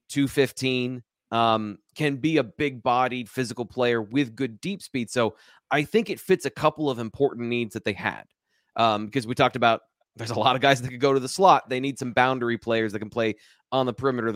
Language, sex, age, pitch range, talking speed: English, male, 30-49, 115-150 Hz, 225 wpm